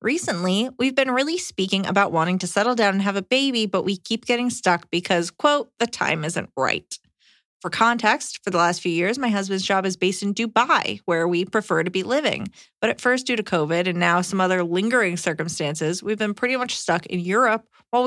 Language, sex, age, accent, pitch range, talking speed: English, female, 20-39, American, 175-235 Hz, 215 wpm